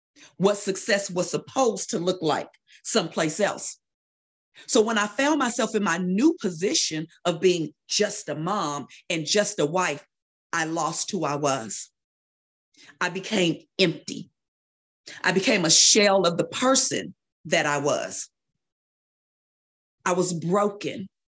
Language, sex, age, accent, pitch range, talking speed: English, female, 40-59, American, 165-215 Hz, 135 wpm